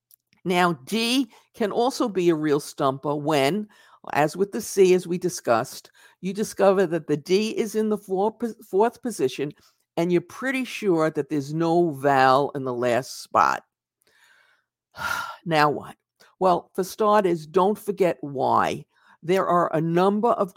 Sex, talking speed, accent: female, 150 wpm, American